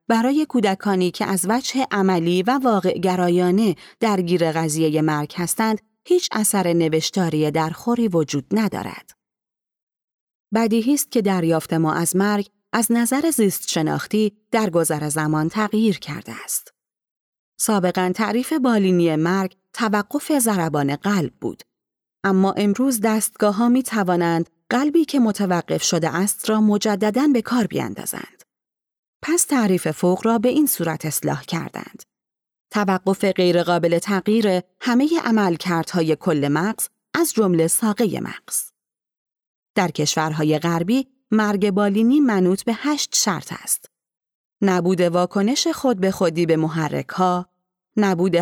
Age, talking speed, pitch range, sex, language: 30-49, 120 wpm, 170-225 Hz, female, Persian